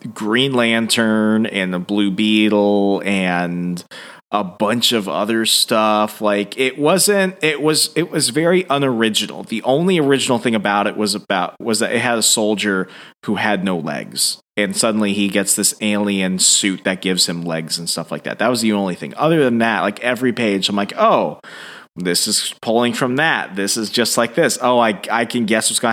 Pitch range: 100-125 Hz